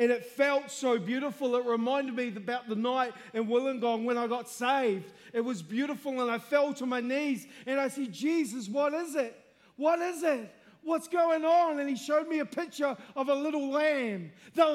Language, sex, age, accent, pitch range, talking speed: English, male, 30-49, Australian, 235-305 Hz, 205 wpm